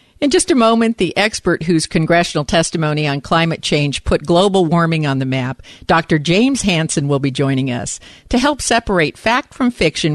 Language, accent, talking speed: English, American, 185 wpm